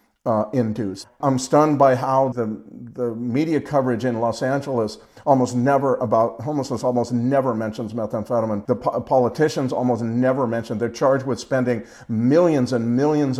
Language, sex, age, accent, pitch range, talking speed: English, male, 50-69, American, 120-140 Hz, 150 wpm